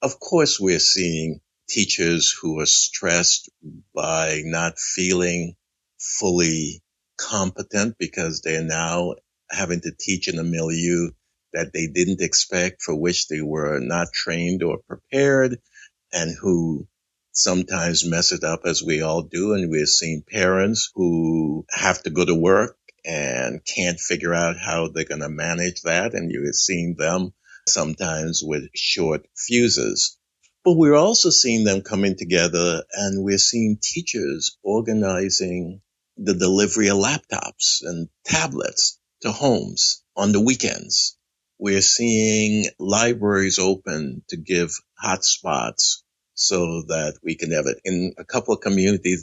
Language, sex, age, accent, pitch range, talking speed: English, male, 60-79, American, 80-100 Hz, 140 wpm